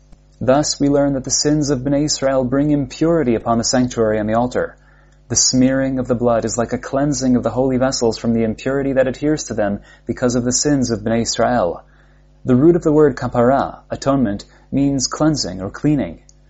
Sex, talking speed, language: male, 200 wpm, English